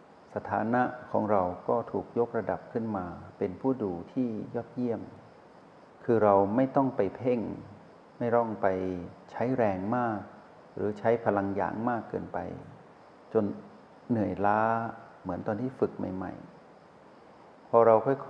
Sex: male